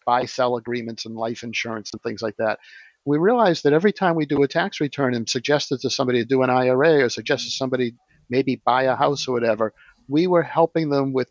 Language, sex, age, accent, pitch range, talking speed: English, male, 50-69, American, 120-145 Hz, 225 wpm